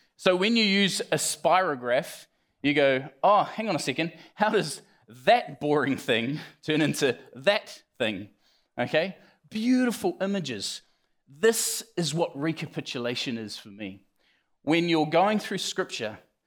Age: 20-39